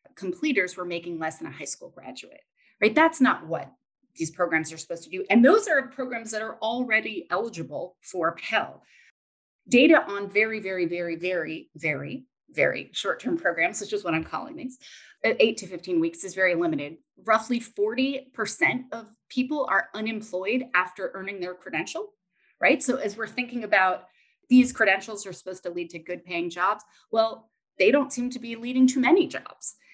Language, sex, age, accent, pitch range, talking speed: English, female, 30-49, American, 185-265 Hz, 180 wpm